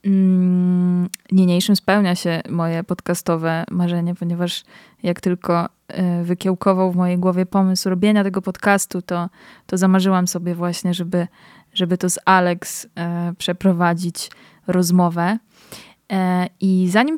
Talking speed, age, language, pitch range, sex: 110 wpm, 20-39, Polish, 175-195 Hz, female